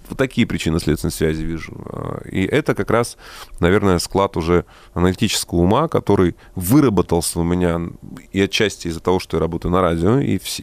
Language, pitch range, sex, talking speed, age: Russian, 85-100 Hz, male, 165 wpm, 30-49